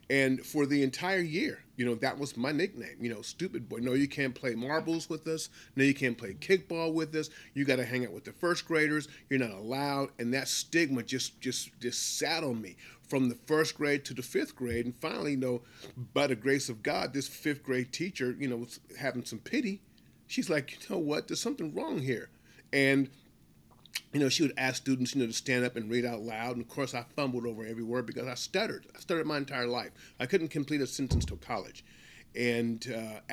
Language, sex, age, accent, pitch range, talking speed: English, male, 40-59, American, 120-140 Hz, 225 wpm